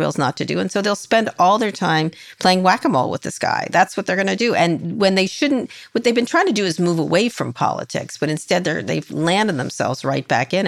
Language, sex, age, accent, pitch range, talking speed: English, female, 40-59, American, 150-195 Hz, 255 wpm